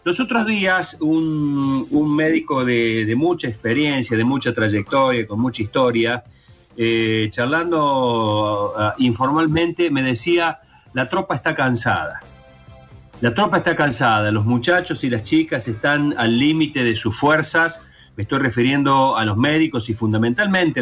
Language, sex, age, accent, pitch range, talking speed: Spanish, male, 40-59, Argentinian, 110-145 Hz, 140 wpm